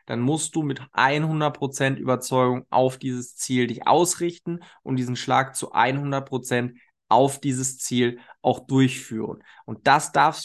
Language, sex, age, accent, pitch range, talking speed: German, male, 20-39, German, 130-165 Hz, 140 wpm